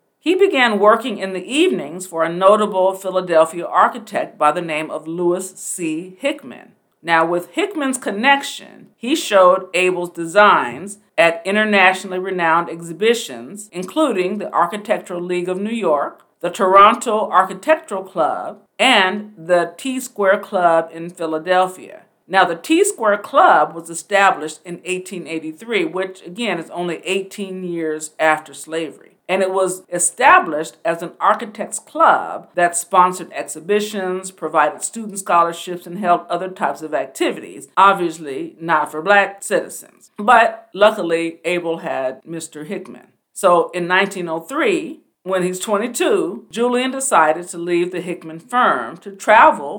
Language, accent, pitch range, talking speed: English, American, 170-210 Hz, 130 wpm